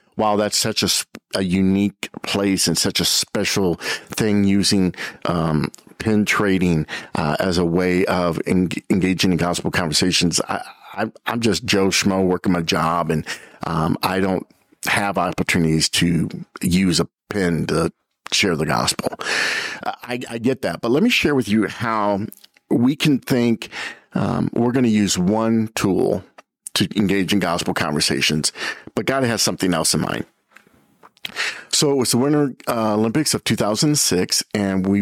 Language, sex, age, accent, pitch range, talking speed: English, male, 50-69, American, 95-125 Hz, 155 wpm